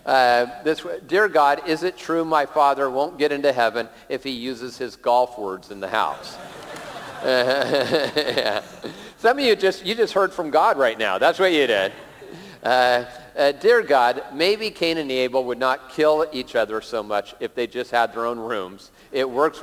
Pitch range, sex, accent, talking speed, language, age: 125-175 Hz, male, American, 185 wpm, English, 50-69